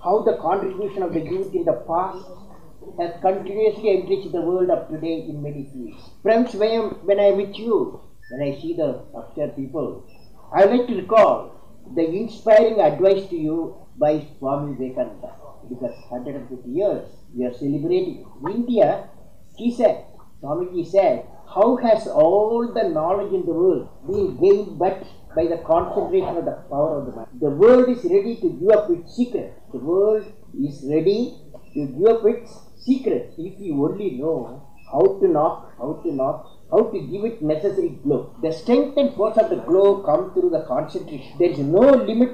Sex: male